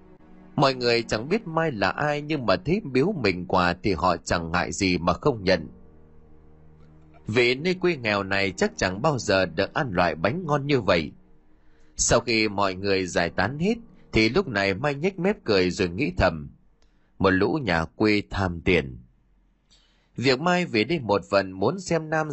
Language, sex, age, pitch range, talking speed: Vietnamese, male, 20-39, 90-145 Hz, 185 wpm